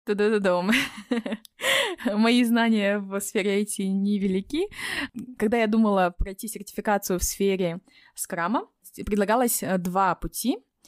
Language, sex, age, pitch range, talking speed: Russian, female, 20-39, 185-230 Hz, 95 wpm